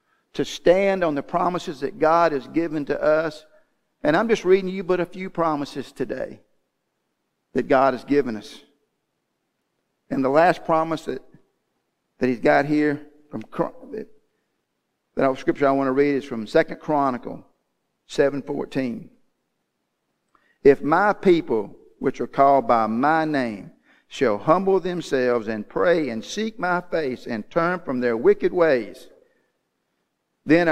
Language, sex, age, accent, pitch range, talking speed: English, male, 50-69, American, 140-200 Hz, 140 wpm